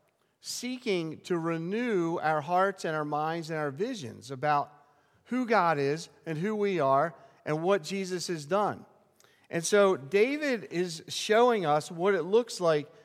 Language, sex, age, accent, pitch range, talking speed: English, male, 50-69, American, 150-205 Hz, 155 wpm